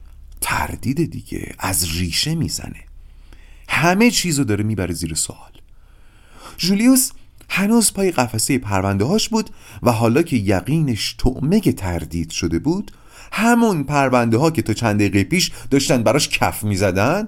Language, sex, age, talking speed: Persian, male, 40-59, 135 wpm